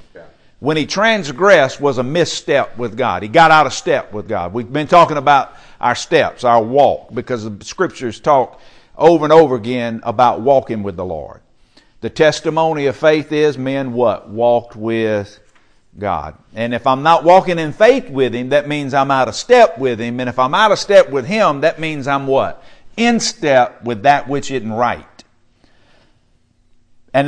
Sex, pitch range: male, 120-155 Hz